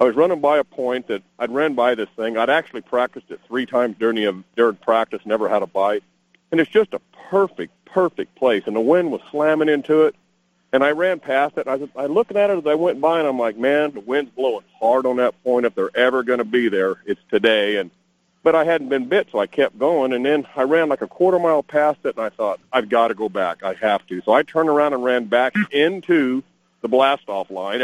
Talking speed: 250 wpm